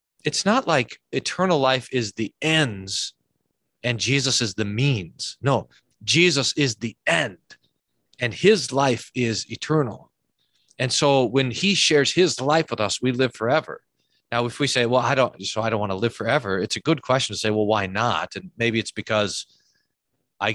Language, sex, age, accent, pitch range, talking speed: English, male, 40-59, American, 105-135 Hz, 185 wpm